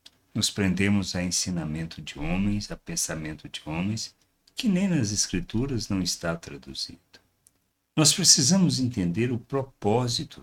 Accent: Brazilian